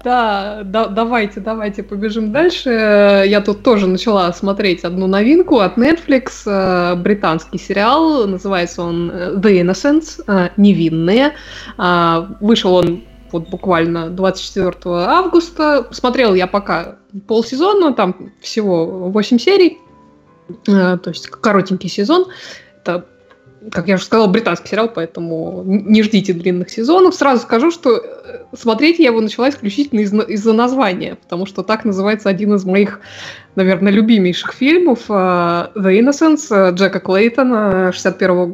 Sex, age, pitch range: female, 20-39, 185-235 Hz